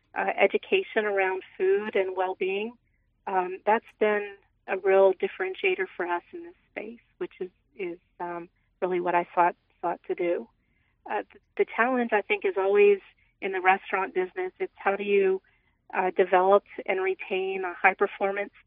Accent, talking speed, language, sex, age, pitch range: American, 160 wpm, English, female, 40-59, 190-225 Hz